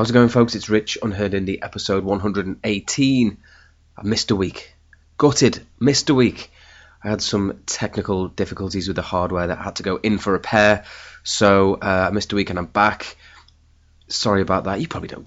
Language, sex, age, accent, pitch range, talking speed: English, male, 30-49, British, 95-125 Hz, 190 wpm